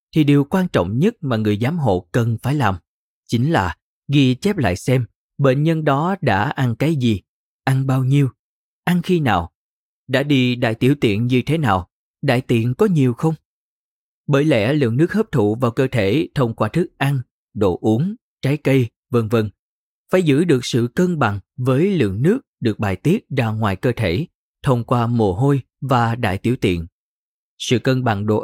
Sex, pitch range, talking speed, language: male, 110-150 Hz, 190 wpm, Vietnamese